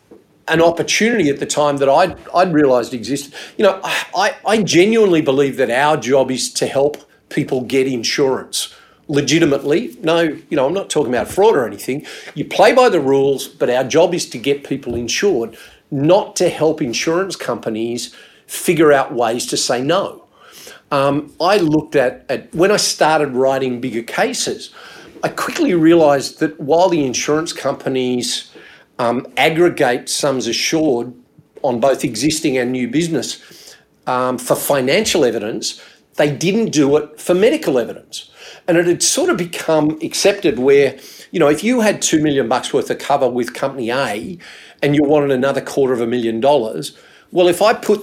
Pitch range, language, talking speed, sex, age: 130-165 Hz, English, 165 wpm, male, 50-69